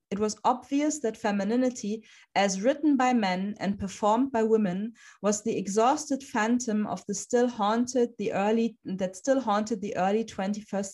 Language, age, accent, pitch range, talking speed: German, 30-49, German, 215-255 Hz, 160 wpm